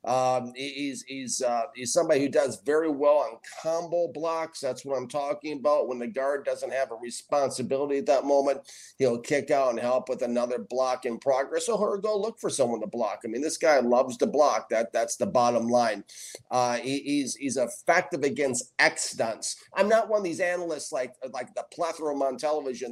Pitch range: 130-165 Hz